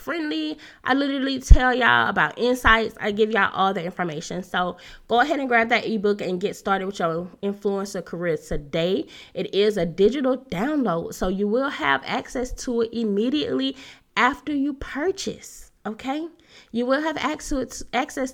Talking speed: 165 wpm